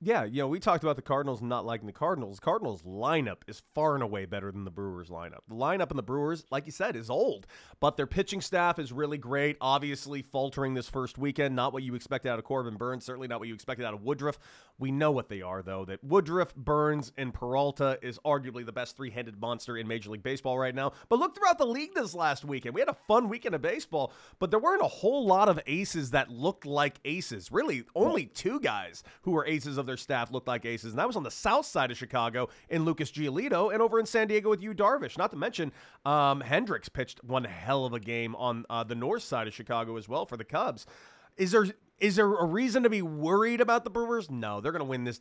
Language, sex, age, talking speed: English, male, 30-49, 245 wpm